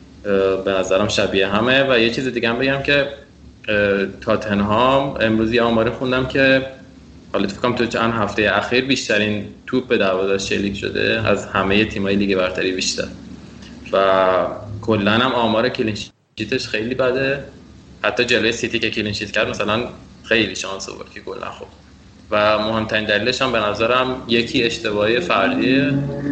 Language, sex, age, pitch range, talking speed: Persian, male, 20-39, 100-115 Hz, 140 wpm